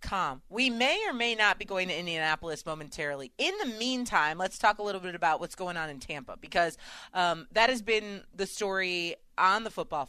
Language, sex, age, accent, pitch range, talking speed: English, female, 30-49, American, 155-220 Hz, 200 wpm